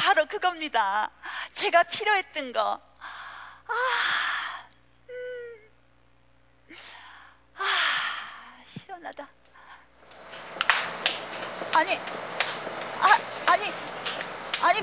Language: Korean